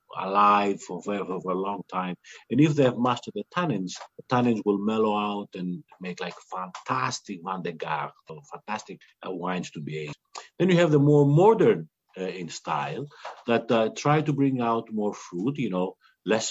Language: English